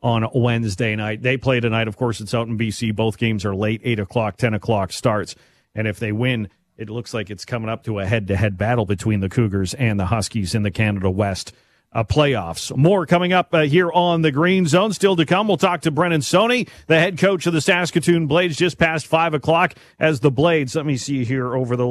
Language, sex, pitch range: English, male, 110-150 Hz